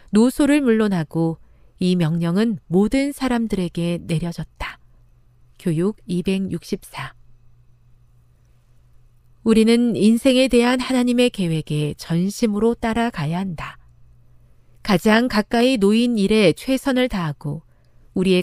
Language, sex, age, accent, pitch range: Korean, female, 40-59, native, 145-230 Hz